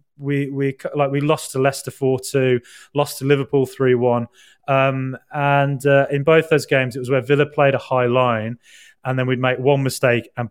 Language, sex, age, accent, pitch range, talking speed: English, male, 20-39, British, 120-140 Hz, 205 wpm